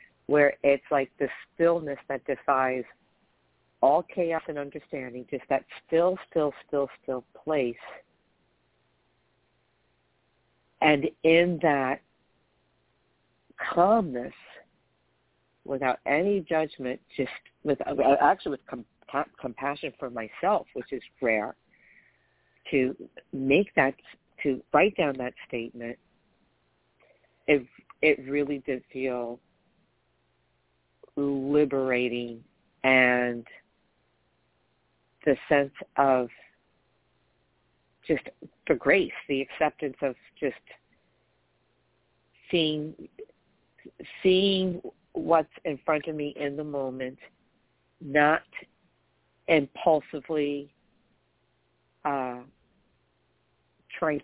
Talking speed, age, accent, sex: 80 wpm, 50-69, American, female